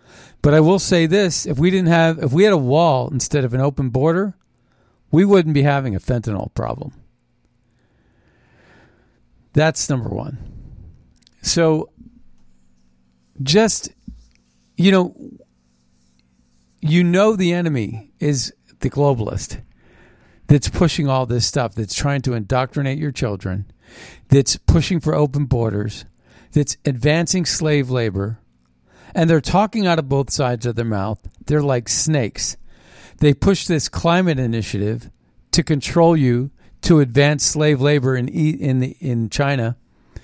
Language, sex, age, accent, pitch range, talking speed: English, male, 50-69, American, 110-150 Hz, 130 wpm